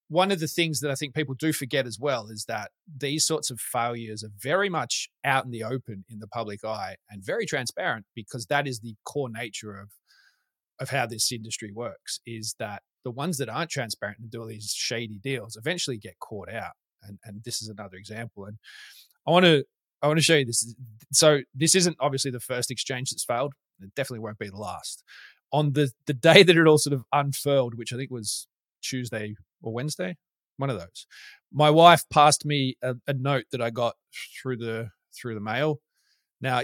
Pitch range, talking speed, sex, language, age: 115-150 Hz, 210 wpm, male, English, 20-39